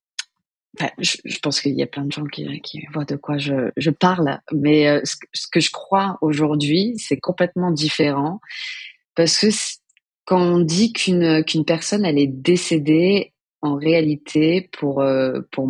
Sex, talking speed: female, 155 wpm